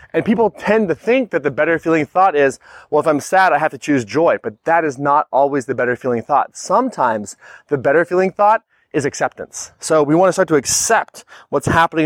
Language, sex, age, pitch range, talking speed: English, male, 30-49, 140-195 Hz, 225 wpm